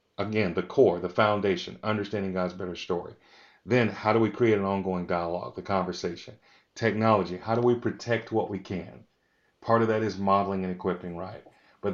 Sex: male